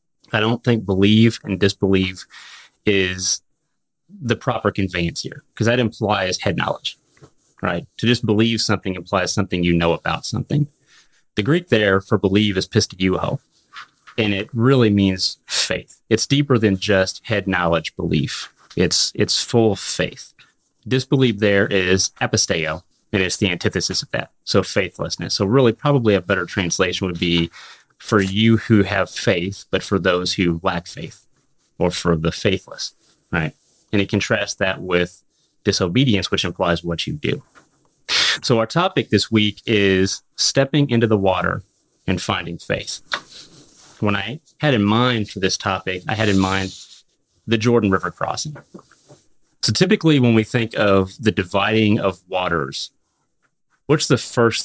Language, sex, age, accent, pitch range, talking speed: English, male, 30-49, American, 95-115 Hz, 155 wpm